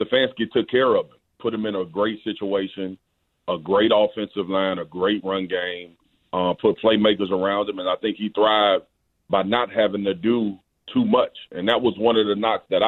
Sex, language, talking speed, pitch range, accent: male, English, 205 wpm, 95-115 Hz, American